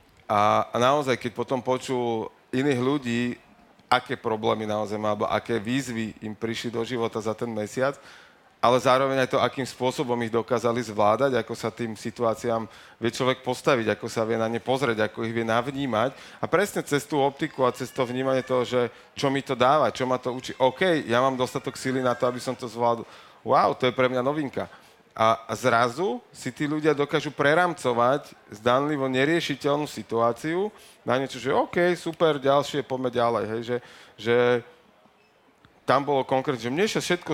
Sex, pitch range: male, 115-140 Hz